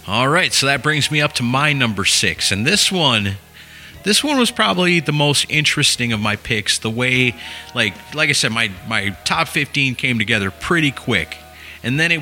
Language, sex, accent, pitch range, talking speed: English, male, American, 100-135 Hz, 200 wpm